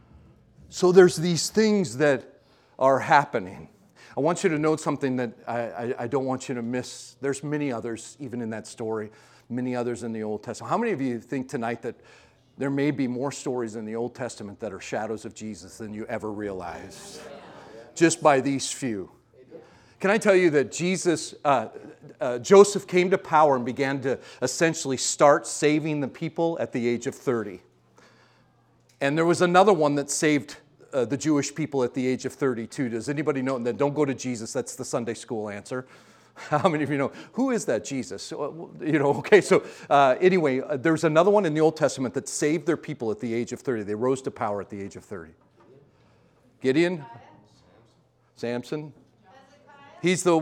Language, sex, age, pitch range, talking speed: English, male, 40-59, 125-175 Hz, 195 wpm